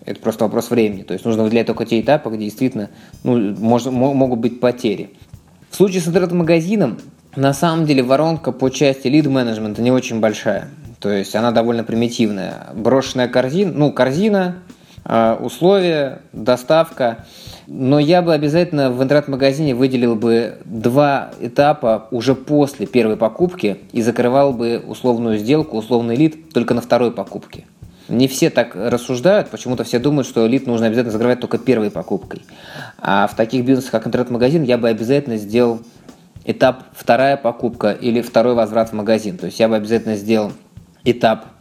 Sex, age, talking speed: male, 20-39, 155 wpm